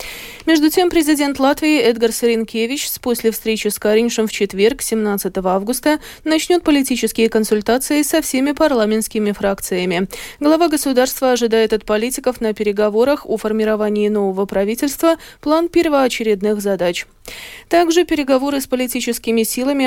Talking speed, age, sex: 125 wpm, 20-39, female